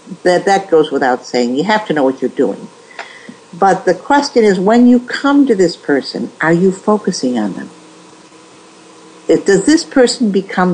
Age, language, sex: 60-79, English, female